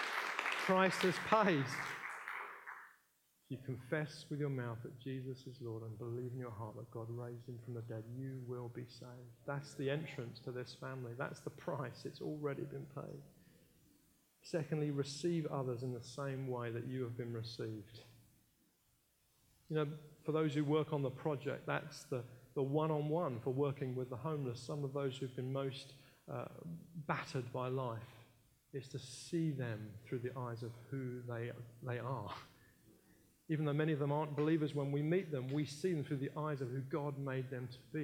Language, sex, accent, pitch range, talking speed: English, male, British, 120-150 Hz, 185 wpm